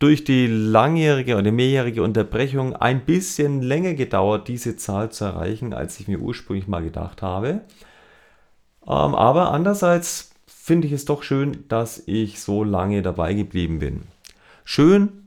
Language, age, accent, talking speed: German, 40-59, German, 140 wpm